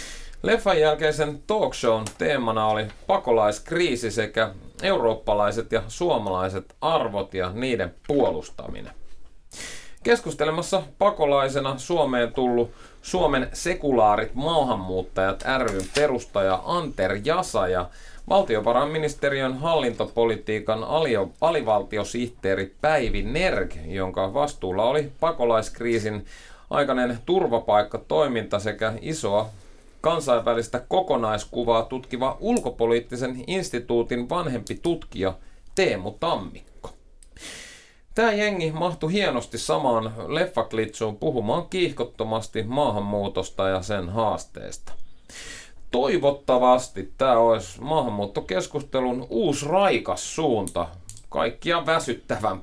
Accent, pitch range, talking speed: native, 105-150 Hz, 80 wpm